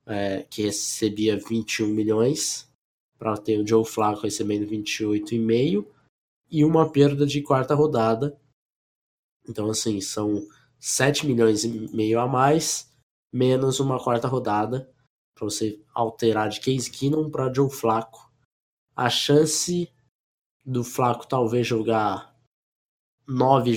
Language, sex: Portuguese, male